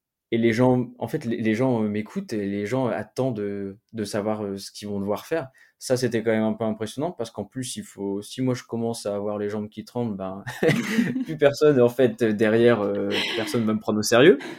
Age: 20-39